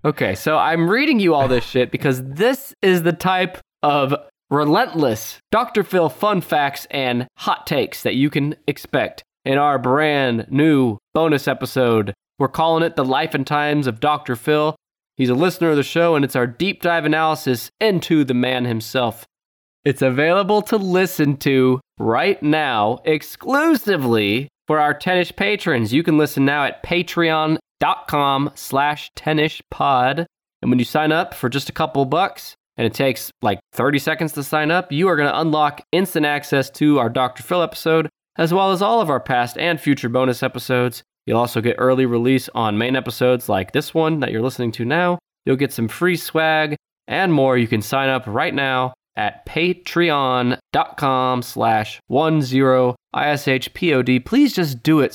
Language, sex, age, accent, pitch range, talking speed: English, male, 20-39, American, 130-160 Hz, 175 wpm